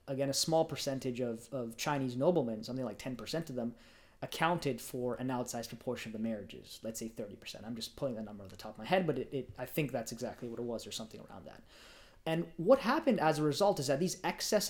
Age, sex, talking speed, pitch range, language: 20-39, male, 240 wpm, 115-145 Hz, English